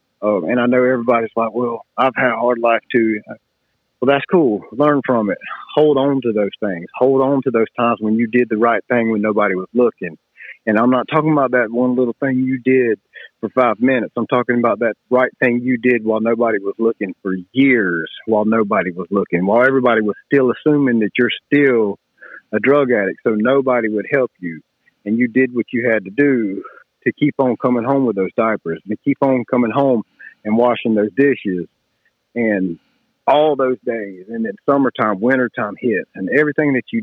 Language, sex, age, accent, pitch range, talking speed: English, male, 40-59, American, 110-135 Hz, 205 wpm